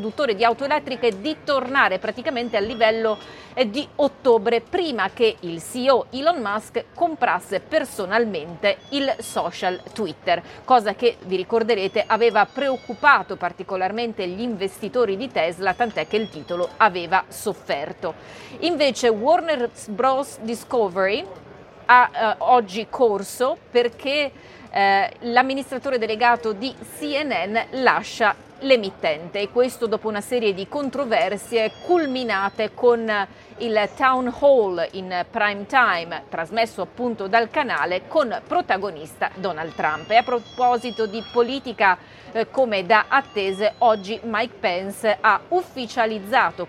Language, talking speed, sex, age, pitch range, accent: Italian, 115 wpm, female, 40-59, 200-255 Hz, native